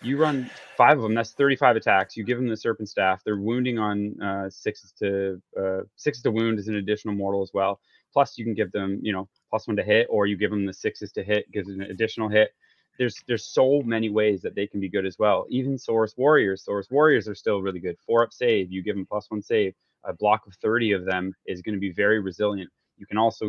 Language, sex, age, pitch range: English, male, 20-39, 100-115 Hz